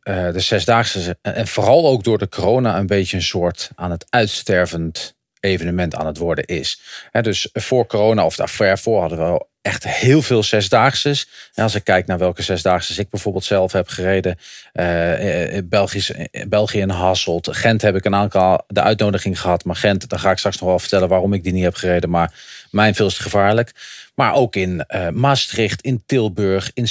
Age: 40-59